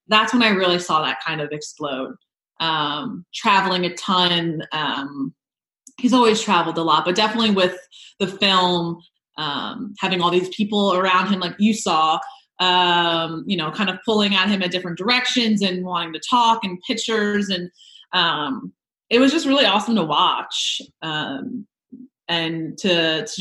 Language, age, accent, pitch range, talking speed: English, 20-39, American, 170-210 Hz, 165 wpm